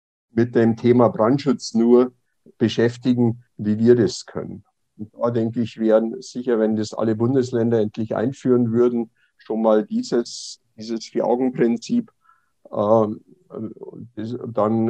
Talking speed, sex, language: 130 wpm, male, German